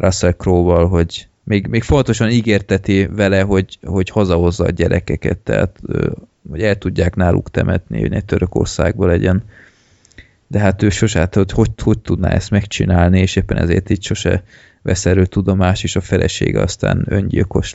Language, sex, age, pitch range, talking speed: Hungarian, male, 20-39, 90-105 Hz, 150 wpm